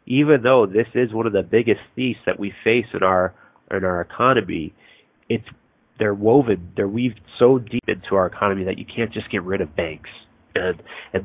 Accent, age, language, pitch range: American, 30-49, English, 100-125 Hz